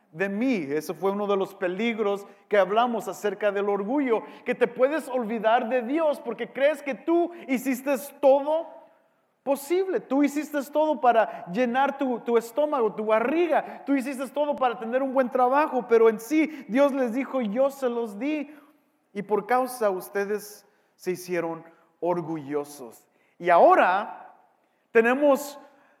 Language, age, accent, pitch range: English, 40-59, Mexican, 210-285 Hz